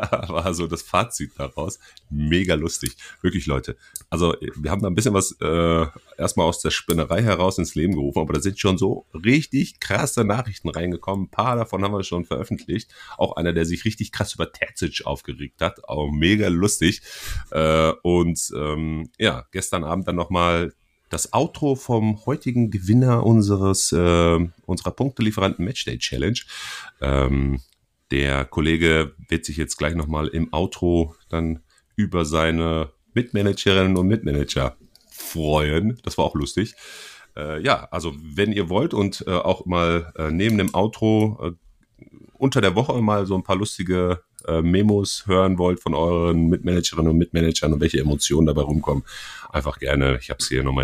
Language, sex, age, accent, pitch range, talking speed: German, male, 30-49, German, 80-100 Hz, 165 wpm